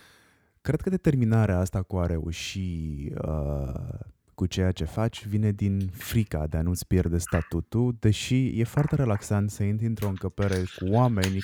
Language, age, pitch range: Romanian, 20-39, 95-120 Hz